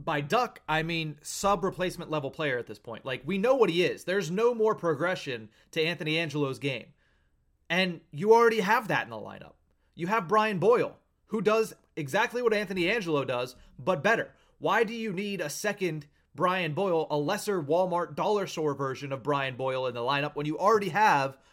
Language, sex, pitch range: English, male, 145-195 Hz